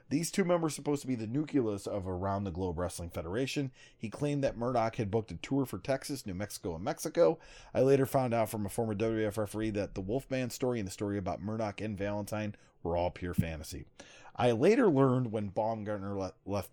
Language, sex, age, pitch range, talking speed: English, male, 30-49, 105-145 Hz, 210 wpm